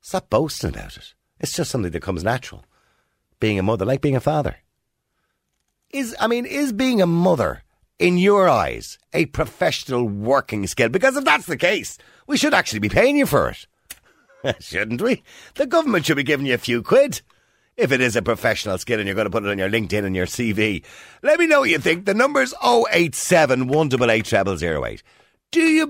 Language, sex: English, male